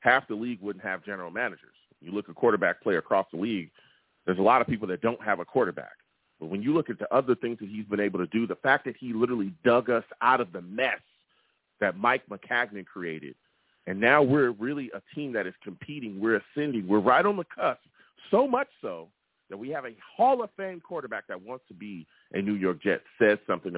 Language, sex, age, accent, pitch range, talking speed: English, male, 40-59, American, 100-150 Hz, 230 wpm